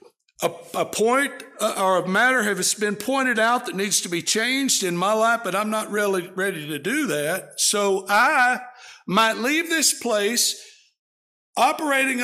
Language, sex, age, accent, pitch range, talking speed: English, male, 60-79, American, 195-270 Hz, 155 wpm